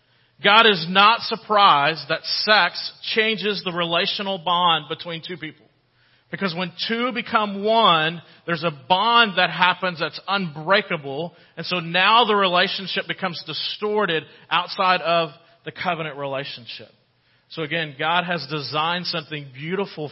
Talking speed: 130 wpm